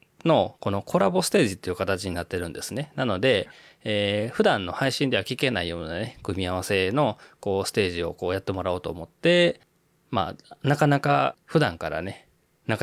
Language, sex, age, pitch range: Japanese, male, 20-39, 95-125 Hz